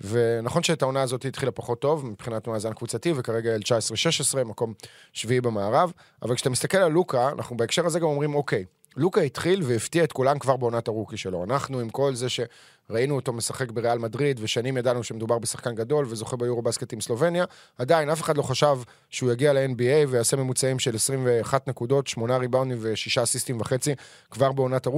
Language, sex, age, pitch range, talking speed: Hebrew, male, 30-49, 120-150 Hz, 165 wpm